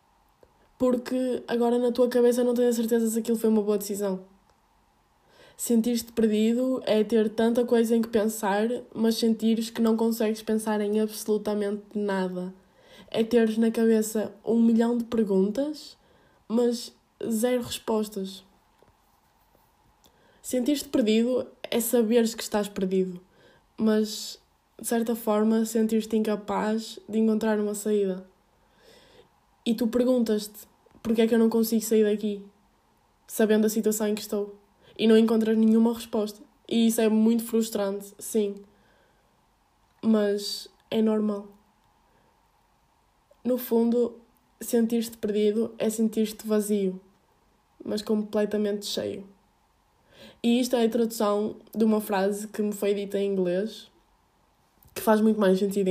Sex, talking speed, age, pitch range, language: female, 130 wpm, 10-29, 205-230 Hz, Portuguese